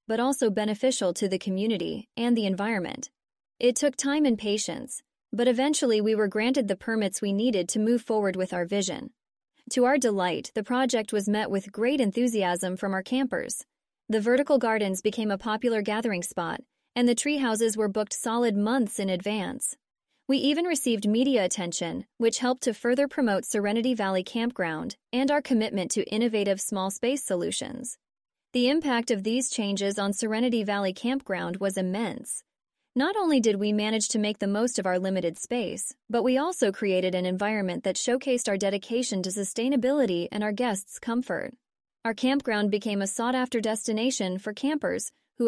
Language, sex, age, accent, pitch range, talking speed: English, female, 20-39, American, 200-255 Hz, 170 wpm